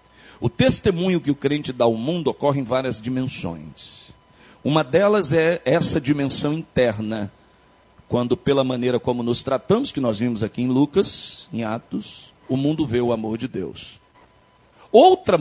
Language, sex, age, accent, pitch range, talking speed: Portuguese, male, 50-69, Brazilian, 130-190 Hz, 155 wpm